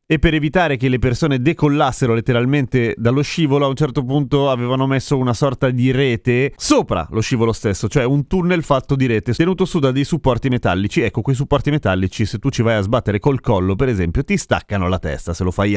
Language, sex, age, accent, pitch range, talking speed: Italian, male, 30-49, native, 110-140 Hz, 215 wpm